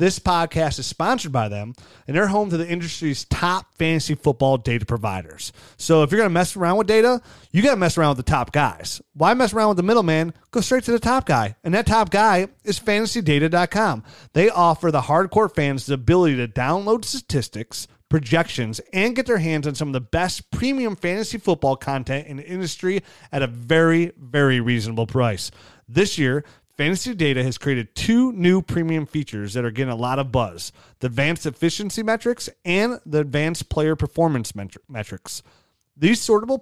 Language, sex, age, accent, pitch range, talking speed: English, male, 30-49, American, 130-185 Hz, 190 wpm